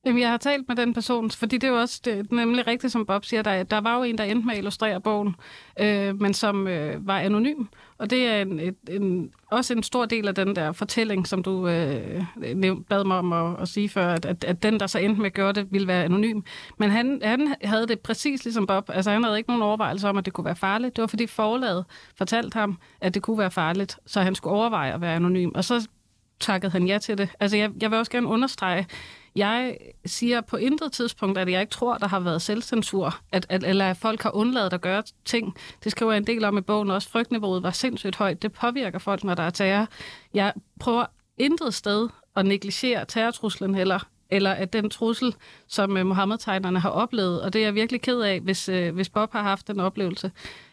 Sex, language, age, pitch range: female, Danish, 30-49, 190-230 Hz